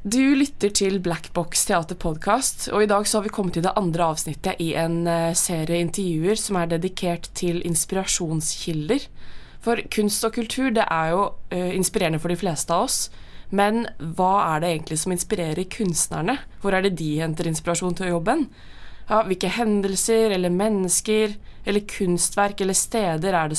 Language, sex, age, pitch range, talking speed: English, female, 20-39, 165-210 Hz, 185 wpm